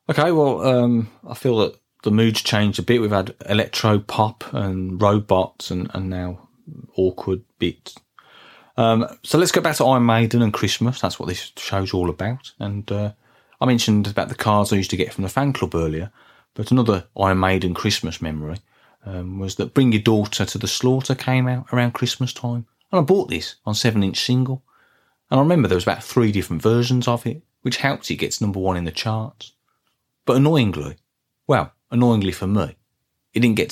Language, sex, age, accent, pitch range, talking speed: English, male, 30-49, British, 95-120 Hz, 195 wpm